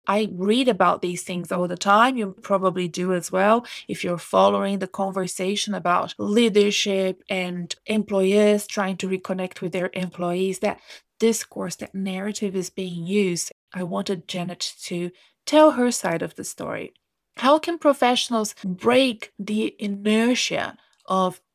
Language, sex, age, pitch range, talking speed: English, female, 20-39, 185-235 Hz, 145 wpm